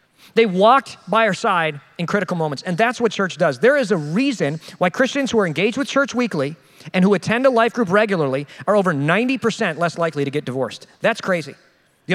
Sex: male